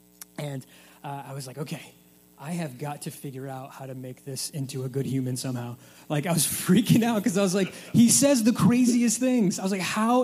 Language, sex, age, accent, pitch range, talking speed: English, male, 20-39, American, 135-180 Hz, 230 wpm